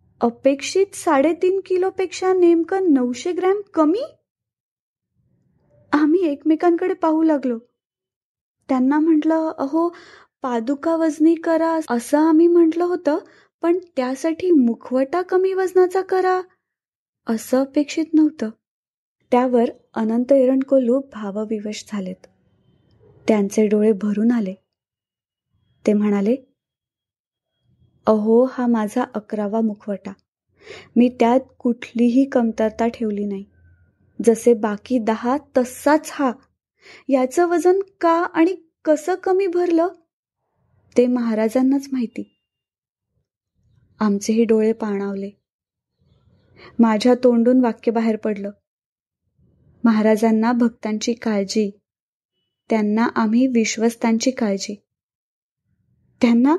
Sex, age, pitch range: female, 20-39, 225-325 Hz